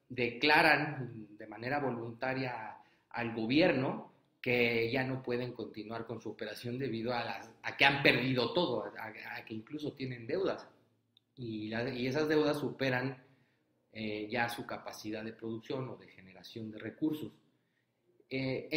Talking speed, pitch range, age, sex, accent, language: 140 wpm, 120-160 Hz, 30-49, male, Mexican, Spanish